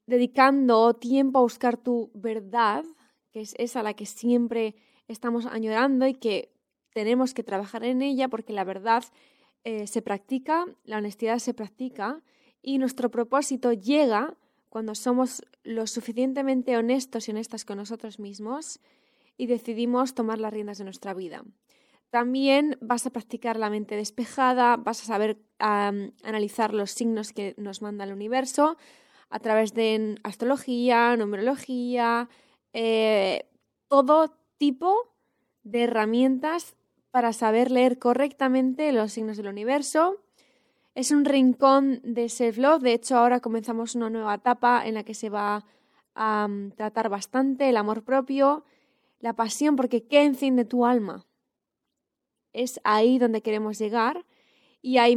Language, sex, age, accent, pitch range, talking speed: Spanish, female, 20-39, Spanish, 220-265 Hz, 140 wpm